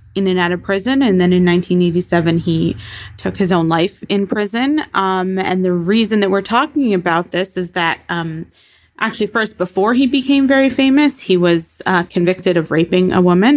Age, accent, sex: 20-39, American, female